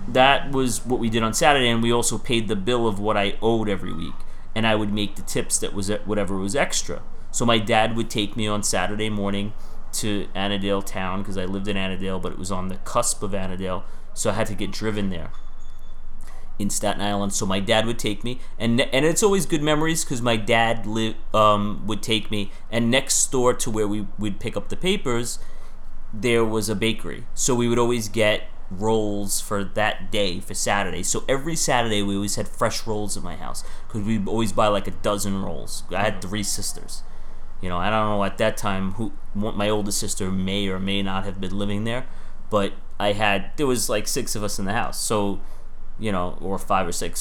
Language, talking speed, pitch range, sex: English, 220 wpm, 100-115 Hz, male